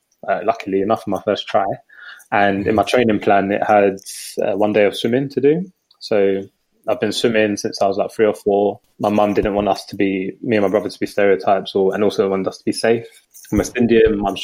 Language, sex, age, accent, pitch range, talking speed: English, male, 20-39, British, 95-115 Hz, 245 wpm